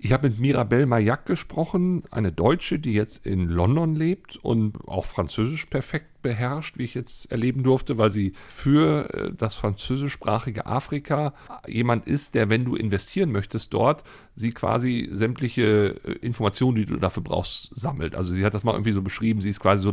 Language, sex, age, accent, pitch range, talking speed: German, male, 40-59, German, 100-130 Hz, 175 wpm